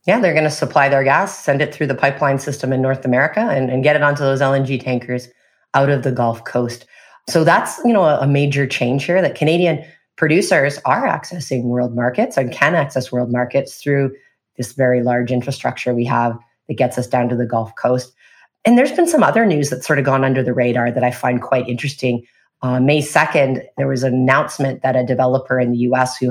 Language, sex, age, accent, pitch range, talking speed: English, female, 30-49, American, 125-145 Hz, 220 wpm